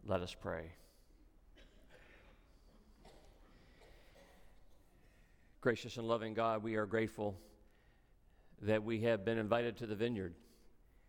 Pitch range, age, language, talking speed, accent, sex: 100-125 Hz, 50-69, English, 95 wpm, American, male